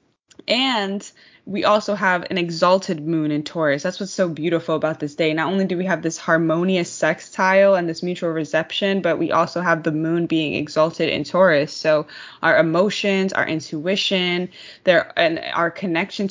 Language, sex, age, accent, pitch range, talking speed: English, female, 20-39, American, 160-190 Hz, 175 wpm